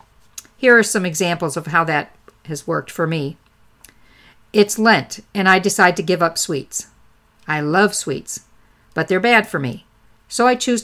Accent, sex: American, female